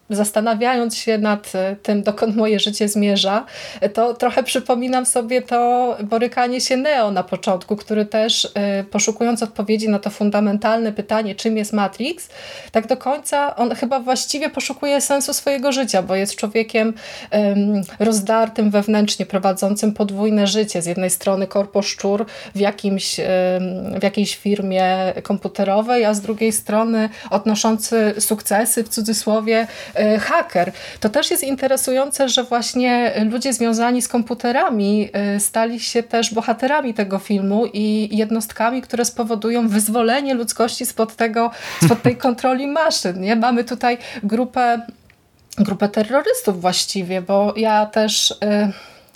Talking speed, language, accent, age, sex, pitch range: 125 wpm, Polish, native, 20-39, female, 205-245 Hz